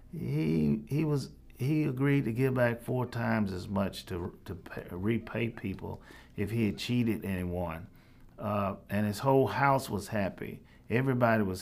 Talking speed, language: 160 wpm, English